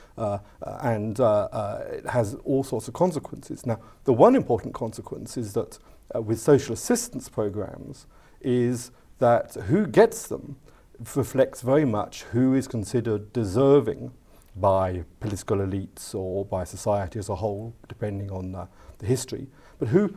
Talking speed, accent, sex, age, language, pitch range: 150 wpm, British, male, 50-69, English, 105-130 Hz